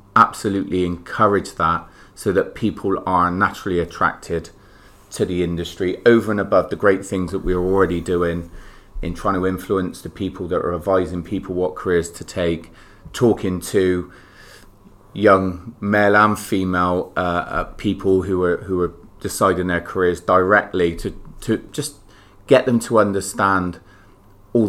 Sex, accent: male, British